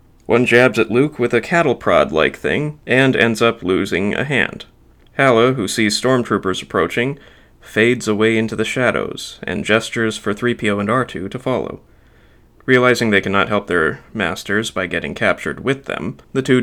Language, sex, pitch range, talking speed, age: English, male, 105-125 Hz, 165 wpm, 30-49